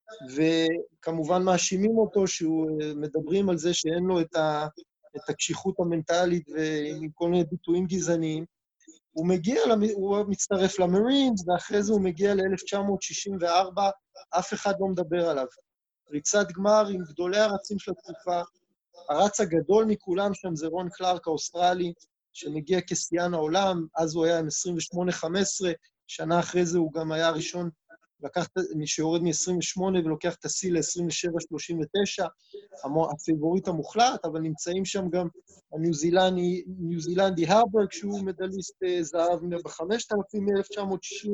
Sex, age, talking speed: male, 20-39, 125 wpm